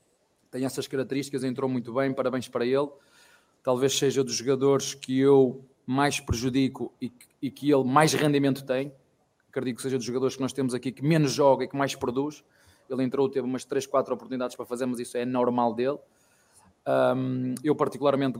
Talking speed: 190 wpm